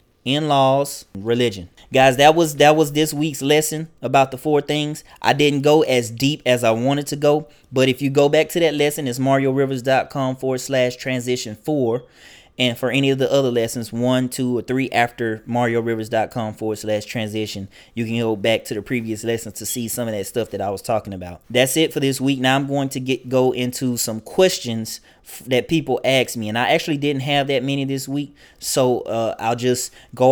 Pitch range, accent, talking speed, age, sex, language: 115-140 Hz, American, 210 wpm, 20-39, male, English